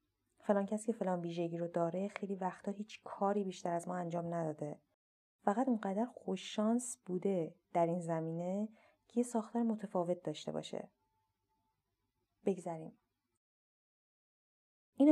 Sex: female